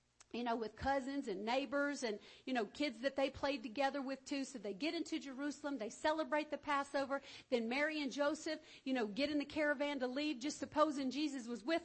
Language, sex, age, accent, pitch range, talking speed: English, female, 50-69, American, 240-310 Hz, 215 wpm